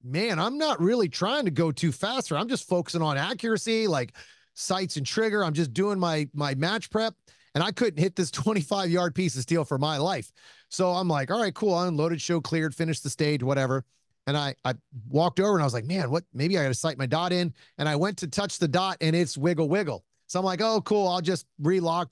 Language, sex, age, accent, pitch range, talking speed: English, male, 30-49, American, 145-185 Hz, 245 wpm